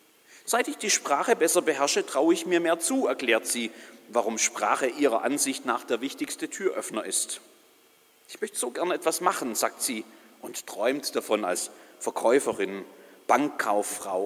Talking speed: 150 wpm